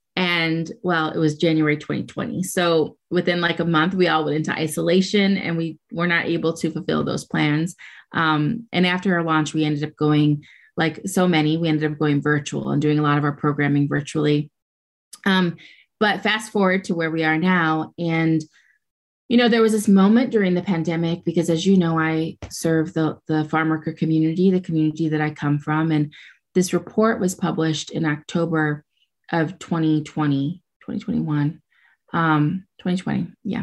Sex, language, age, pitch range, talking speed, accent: female, English, 30-49, 150-175 Hz, 170 wpm, American